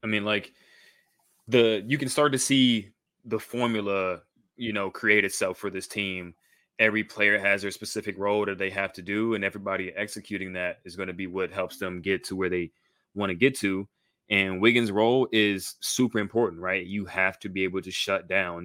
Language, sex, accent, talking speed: English, male, American, 205 wpm